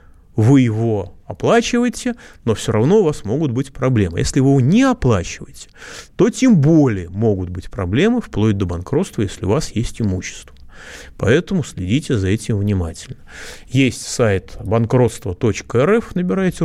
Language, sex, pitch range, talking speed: Russian, male, 95-150 Hz, 140 wpm